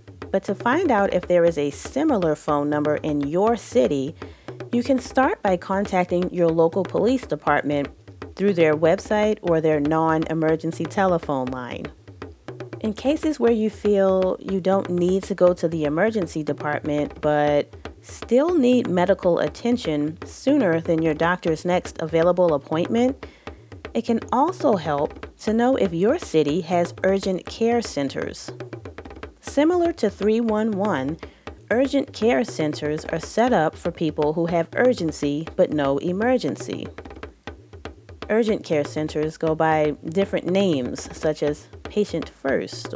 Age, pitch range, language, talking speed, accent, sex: 30-49, 155-215 Hz, English, 135 wpm, American, female